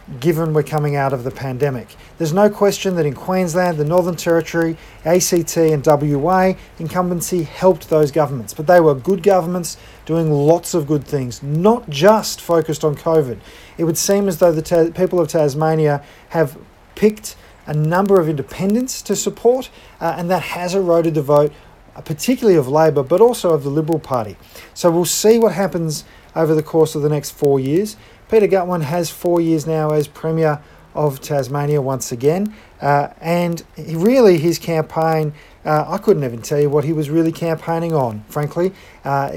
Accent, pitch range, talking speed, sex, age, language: Australian, 145-180 Hz, 175 wpm, male, 40-59, English